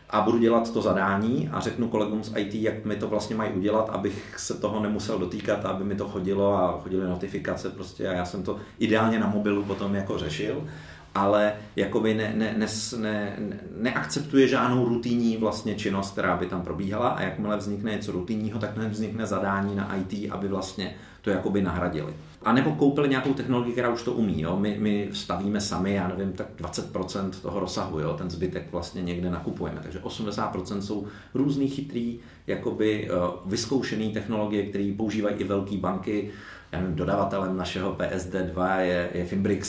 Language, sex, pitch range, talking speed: Czech, male, 90-110 Hz, 175 wpm